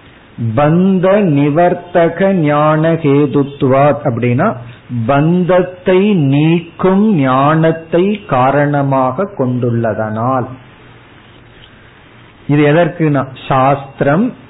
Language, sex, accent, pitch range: Tamil, male, native, 125-165 Hz